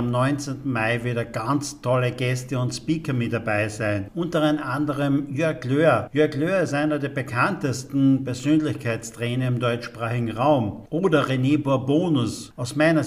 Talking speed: 140 wpm